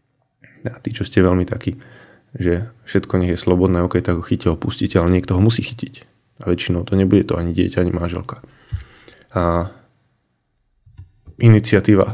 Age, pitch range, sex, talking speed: 20-39, 90-115 Hz, male, 170 wpm